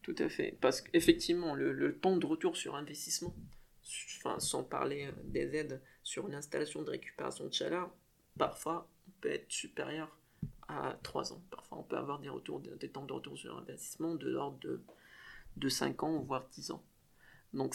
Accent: French